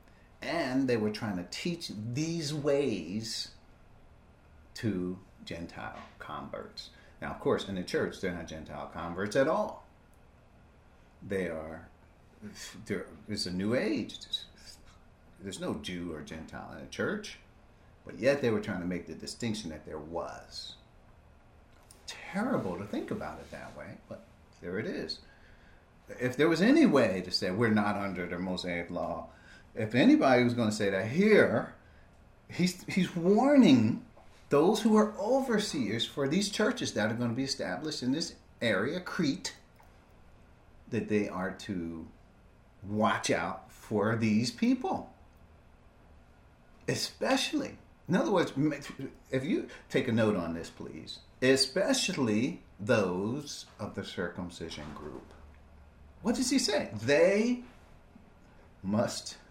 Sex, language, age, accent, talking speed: male, English, 50-69, American, 135 wpm